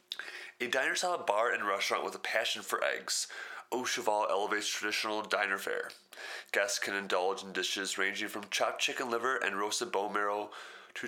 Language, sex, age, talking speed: English, male, 20-39, 170 wpm